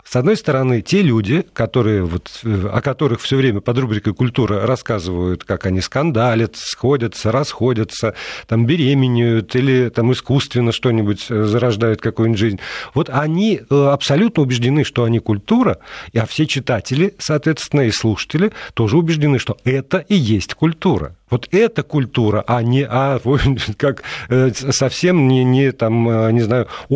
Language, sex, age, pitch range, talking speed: Russian, male, 50-69, 110-145 Hz, 120 wpm